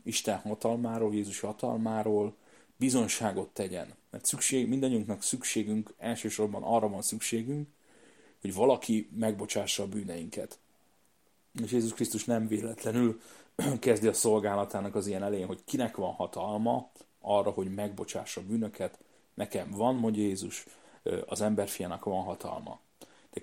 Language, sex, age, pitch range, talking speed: Hungarian, male, 30-49, 105-120 Hz, 120 wpm